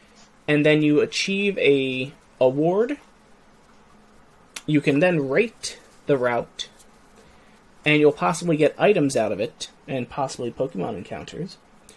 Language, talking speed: English, 120 wpm